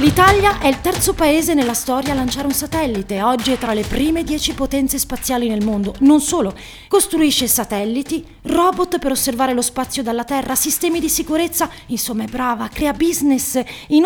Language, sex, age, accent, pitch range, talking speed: Italian, female, 30-49, native, 240-315 Hz, 175 wpm